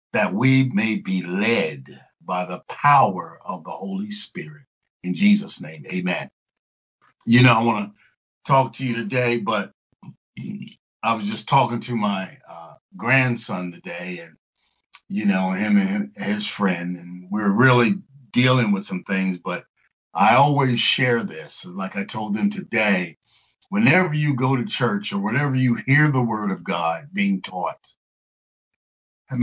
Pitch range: 115-175 Hz